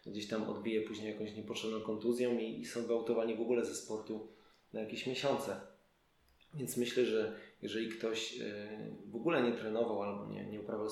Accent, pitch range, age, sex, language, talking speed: native, 110-120 Hz, 20-39, male, Polish, 170 wpm